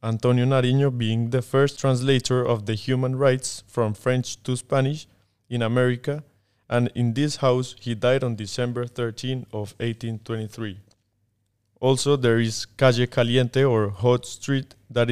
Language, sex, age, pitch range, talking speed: English, male, 20-39, 115-130 Hz, 145 wpm